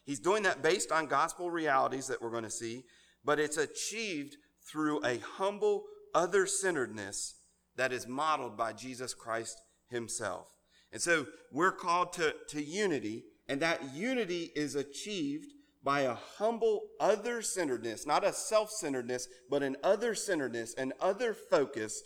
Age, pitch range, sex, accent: 40-59, 125-175 Hz, male, American